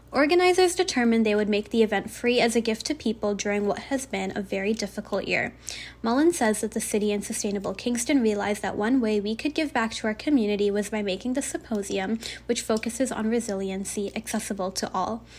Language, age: English, 10-29